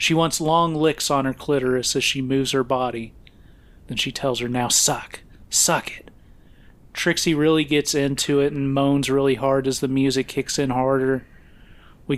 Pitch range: 130-145 Hz